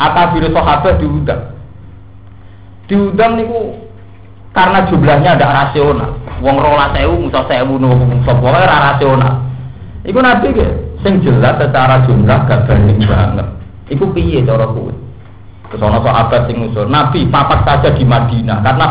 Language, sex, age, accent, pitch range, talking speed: Indonesian, male, 40-59, native, 115-145 Hz, 130 wpm